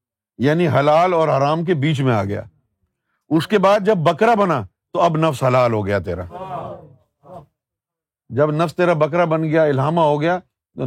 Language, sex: Urdu, male